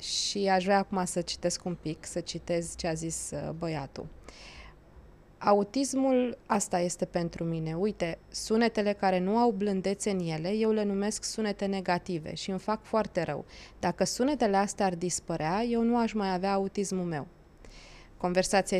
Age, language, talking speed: 20-39, Romanian, 165 wpm